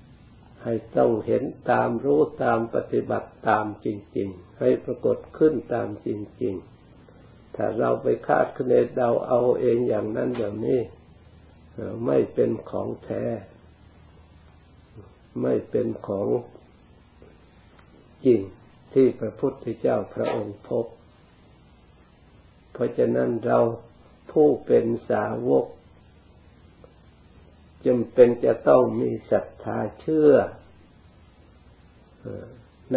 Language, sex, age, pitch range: Thai, male, 60-79, 85-120 Hz